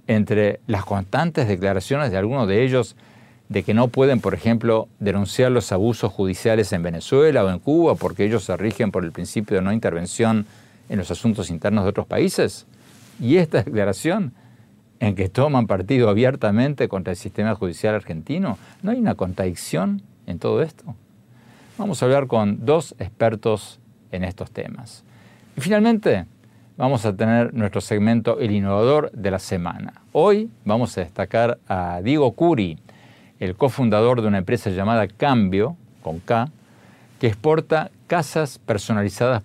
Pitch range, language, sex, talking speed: 100-130 Hz, Spanish, male, 155 wpm